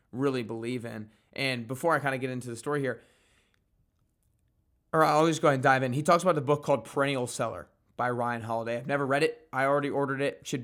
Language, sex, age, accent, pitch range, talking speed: English, male, 20-39, American, 120-150 Hz, 230 wpm